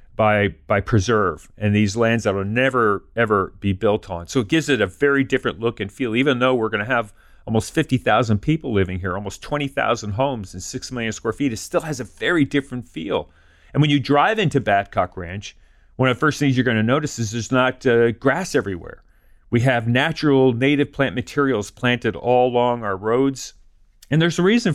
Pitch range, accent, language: 105-135 Hz, American, English